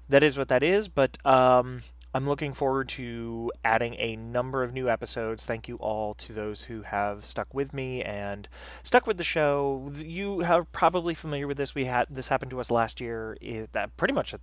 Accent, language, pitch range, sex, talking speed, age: American, English, 110-140 Hz, male, 210 wpm, 30-49